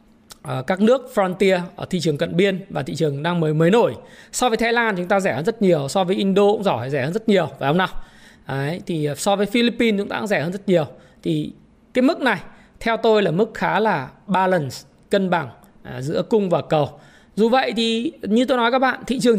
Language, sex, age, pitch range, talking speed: Vietnamese, male, 20-39, 175-230 Hz, 240 wpm